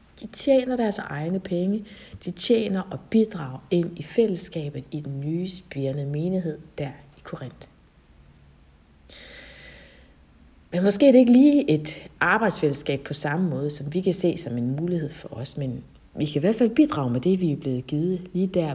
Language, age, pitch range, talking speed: Danish, 60-79, 145-215 Hz, 175 wpm